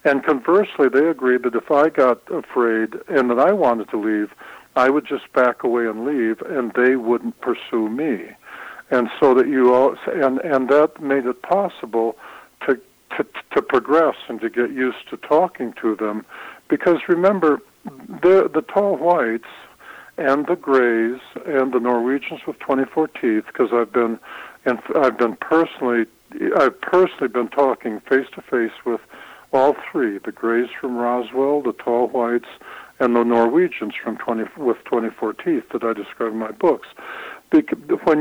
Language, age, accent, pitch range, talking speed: English, 60-79, American, 120-160 Hz, 160 wpm